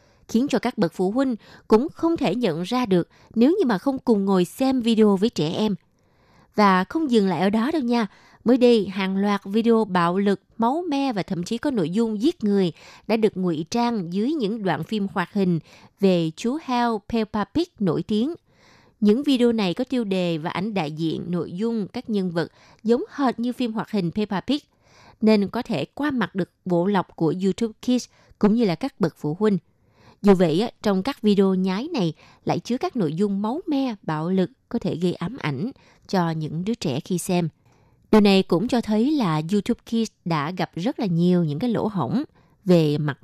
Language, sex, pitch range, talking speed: Vietnamese, female, 175-235 Hz, 210 wpm